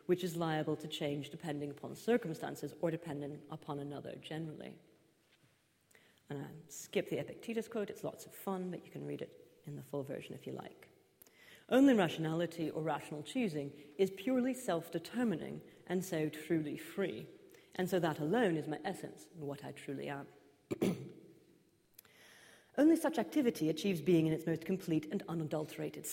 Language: English